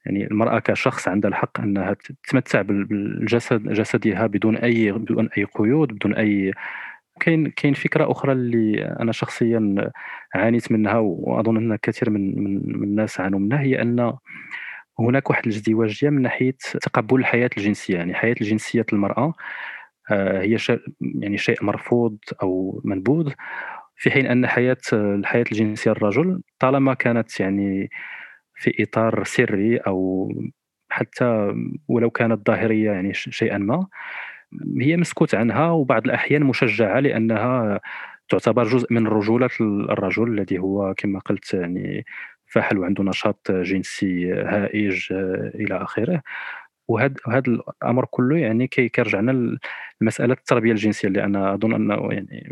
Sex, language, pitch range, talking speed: male, Arabic, 100-120 Hz, 130 wpm